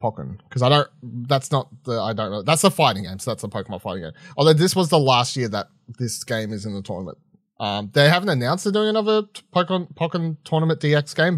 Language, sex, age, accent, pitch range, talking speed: English, male, 30-49, Australian, 110-155 Hz, 235 wpm